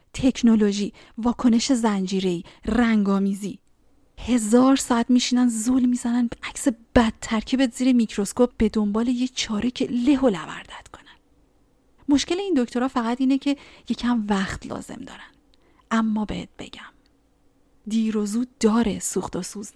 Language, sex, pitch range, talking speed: Persian, female, 205-245 Hz, 125 wpm